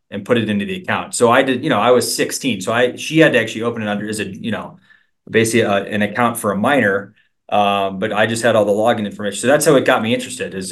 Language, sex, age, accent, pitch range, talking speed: English, male, 30-49, American, 105-125 Hz, 290 wpm